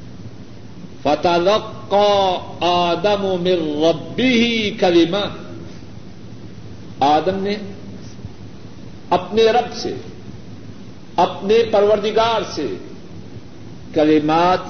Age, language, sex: 50-69, Urdu, male